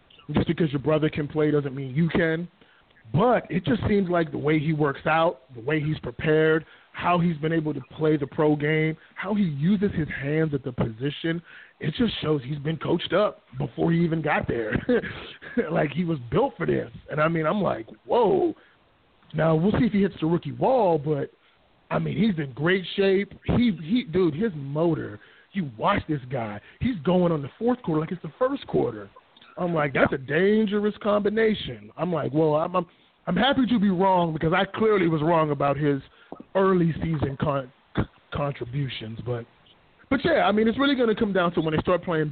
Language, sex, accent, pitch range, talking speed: English, male, American, 150-185 Hz, 205 wpm